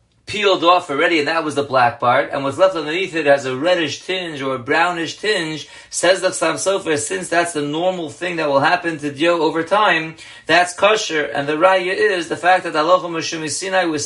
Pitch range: 145-175 Hz